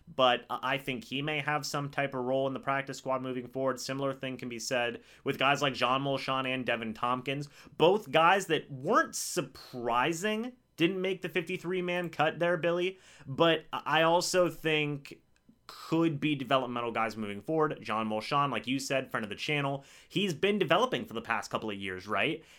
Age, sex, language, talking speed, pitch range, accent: 30-49, male, English, 185 wpm, 125-165 Hz, American